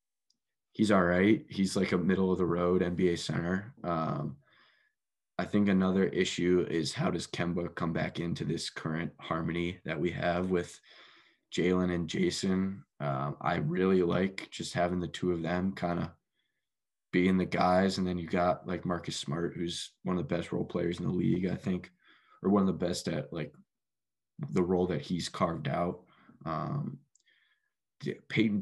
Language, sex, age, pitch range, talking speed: English, male, 20-39, 90-95 Hz, 175 wpm